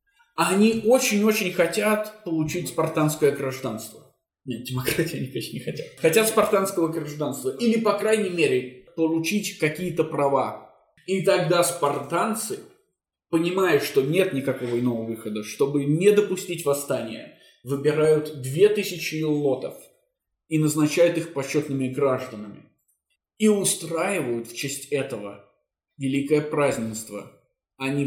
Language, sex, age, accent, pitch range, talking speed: Russian, male, 20-39, native, 135-175 Hz, 110 wpm